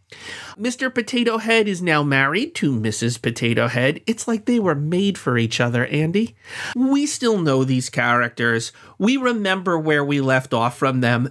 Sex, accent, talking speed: male, American, 170 wpm